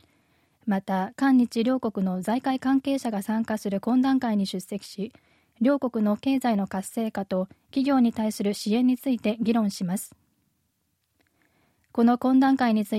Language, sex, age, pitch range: Japanese, female, 20-39, 205-255 Hz